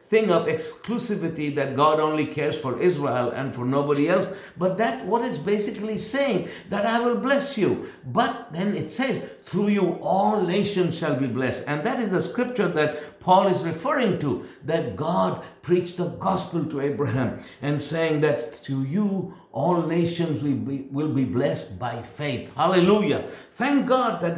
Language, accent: English, Indian